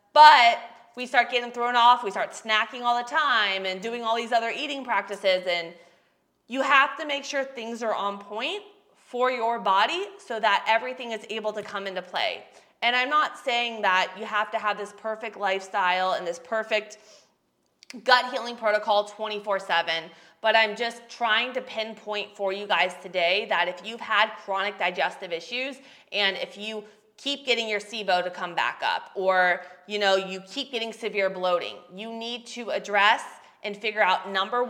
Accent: American